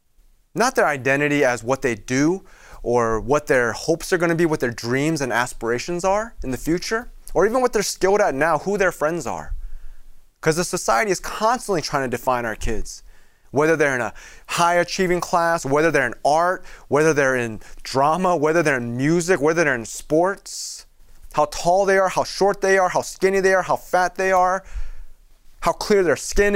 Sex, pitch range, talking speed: male, 125-180 Hz, 200 wpm